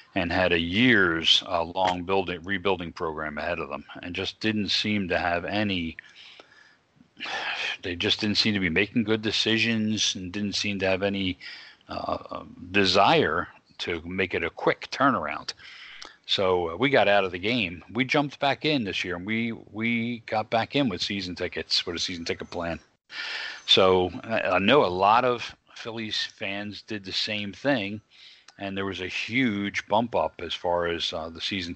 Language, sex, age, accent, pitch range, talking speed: English, male, 40-59, American, 90-110 Hz, 175 wpm